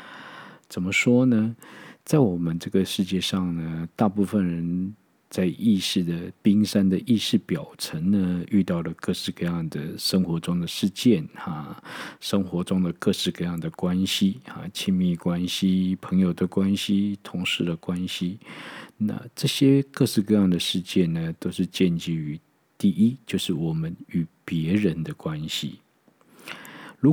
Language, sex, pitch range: Chinese, male, 85-100 Hz